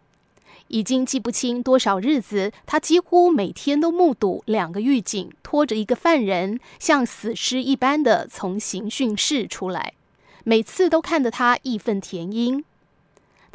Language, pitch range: Chinese, 205-270 Hz